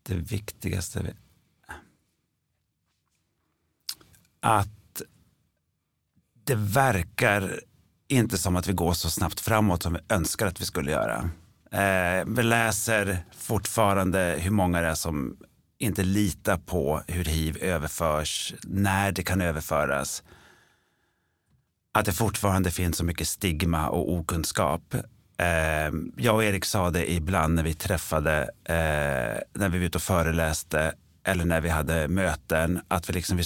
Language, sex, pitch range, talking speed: Swedish, male, 85-105 Hz, 135 wpm